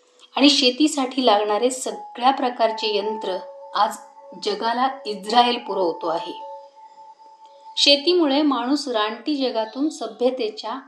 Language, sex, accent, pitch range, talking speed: Marathi, female, native, 225-295 Hz, 90 wpm